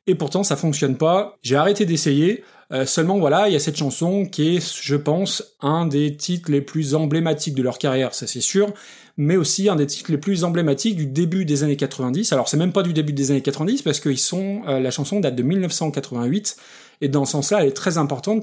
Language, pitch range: French, 140-180 Hz